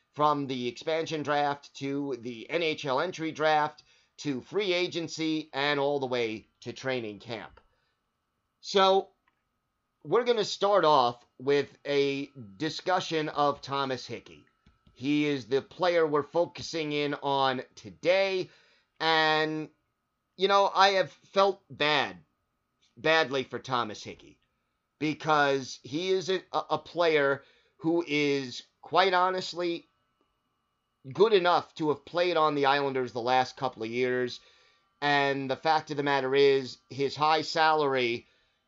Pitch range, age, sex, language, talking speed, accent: 130-165 Hz, 30-49, male, English, 130 wpm, American